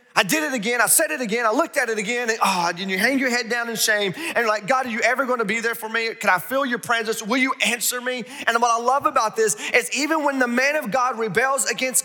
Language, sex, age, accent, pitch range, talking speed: English, male, 30-49, American, 140-230 Hz, 295 wpm